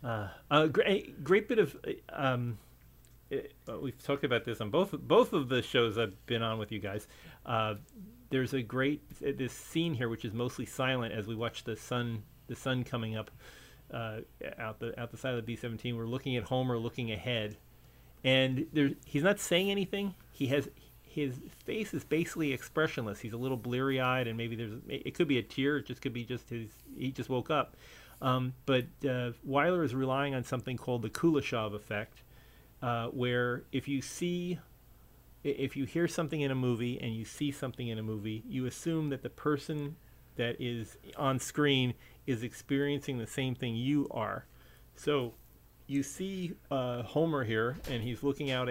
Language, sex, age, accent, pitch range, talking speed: English, male, 40-59, American, 115-140 Hz, 190 wpm